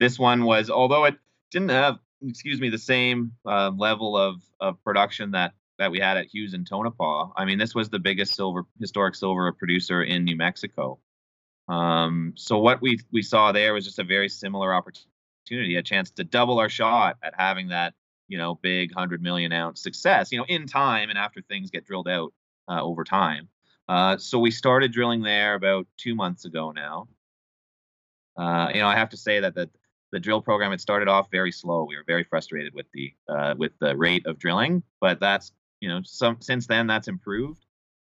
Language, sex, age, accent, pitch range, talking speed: English, male, 30-49, American, 90-115 Hz, 200 wpm